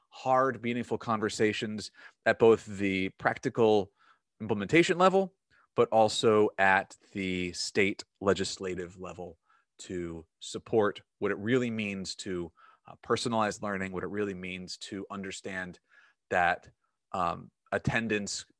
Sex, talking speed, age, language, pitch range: male, 115 wpm, 30-49, English, 95-125 Hz